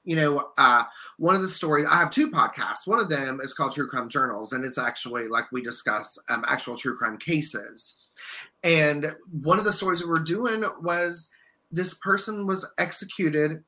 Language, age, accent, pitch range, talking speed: English, 30-49, American, 140-175 Hz, 190 wpm